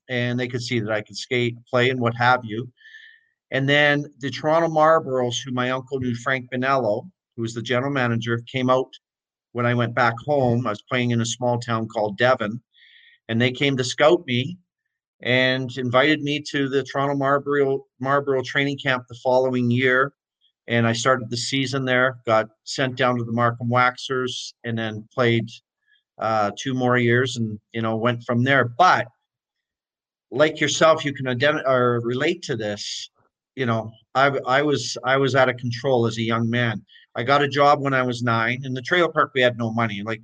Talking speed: 195 wpm